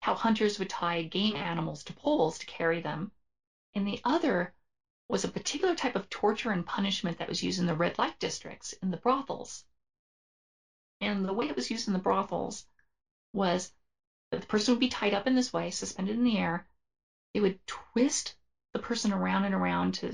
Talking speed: 195 wpm